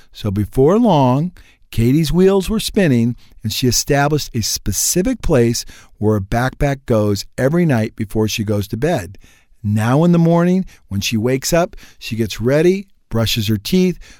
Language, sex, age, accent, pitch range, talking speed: English, male, 50-69, American, 105-145 Hz, 160 wpm